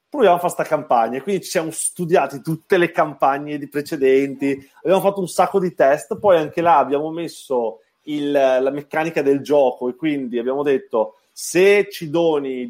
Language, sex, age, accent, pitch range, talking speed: Italian, male, 30-49, native, 135-180 Hz, 170 wpm